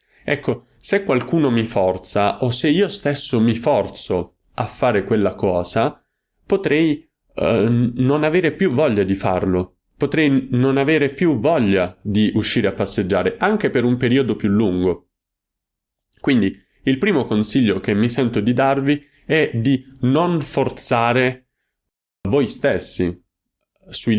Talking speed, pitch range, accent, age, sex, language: 135 wpm, 100-135 Hz, native, 30-49, male, Italian